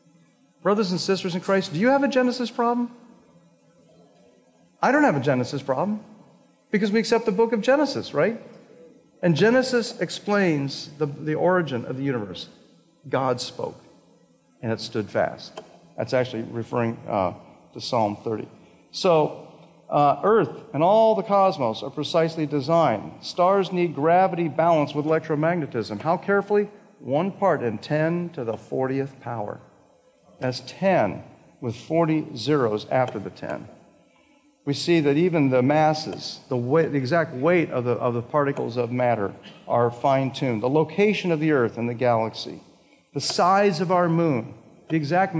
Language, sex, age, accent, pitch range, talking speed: English, male, 50-69, American, 125-190 Hz, 150 wpm